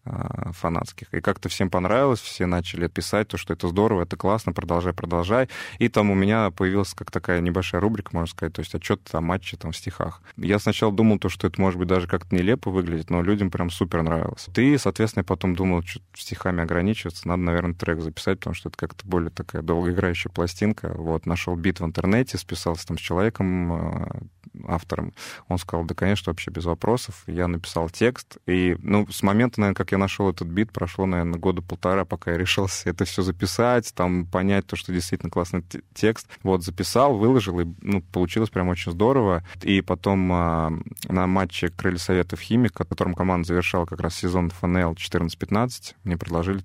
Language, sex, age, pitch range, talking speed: Russian, male, 20-39, 85-100 Hz, 190 wpm